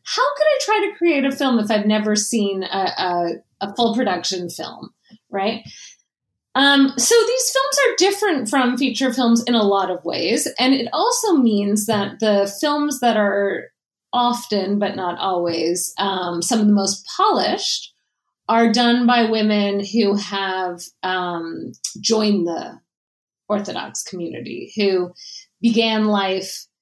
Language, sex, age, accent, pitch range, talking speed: English, female, 30-49, American, 190-250 Hz, 145 wpm